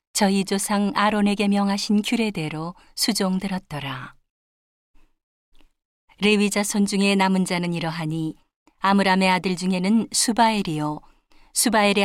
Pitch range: 175-210 Hz